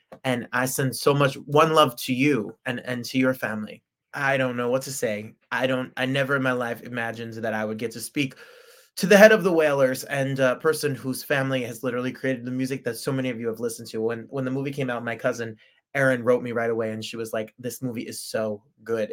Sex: male